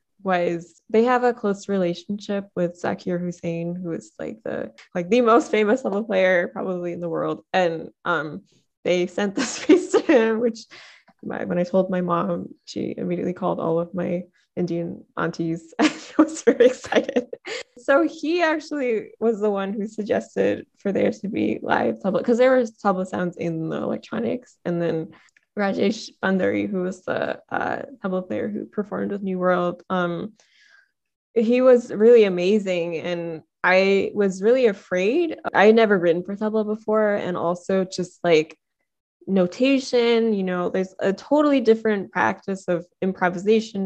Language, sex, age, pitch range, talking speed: English, female, 20-39, 175-220 Hz, 160 wpm